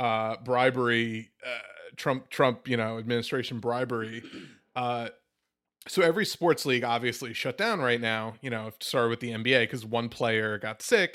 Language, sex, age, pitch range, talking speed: English, male, 30-49, 110-125 Hz, 160 wpm